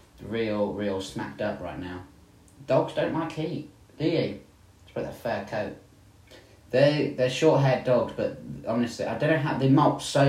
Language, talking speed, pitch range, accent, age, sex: English, 180 wpm, 95-120 Hz, British, 30-49, male